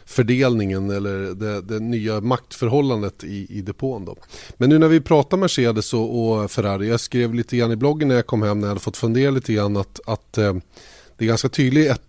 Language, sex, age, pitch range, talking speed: Swedish, male, 30-49, 105-130 Hz, 215 wpm